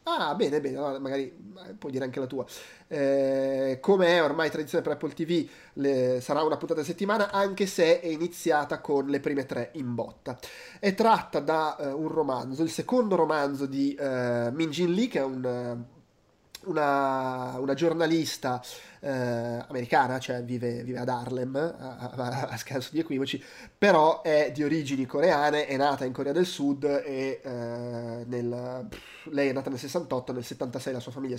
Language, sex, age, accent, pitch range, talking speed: Italian, male, 20-39, native, 130-165 Hz, 180 wpm